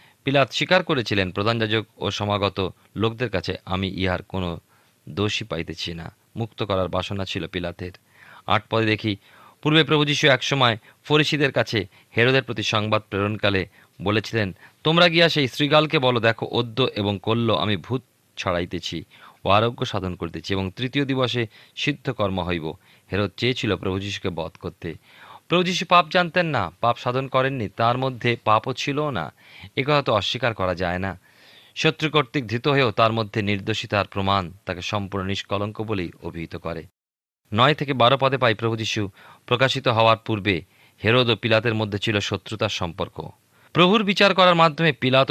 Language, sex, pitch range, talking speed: Bengali, male, 95-130 Hz, 115 wpm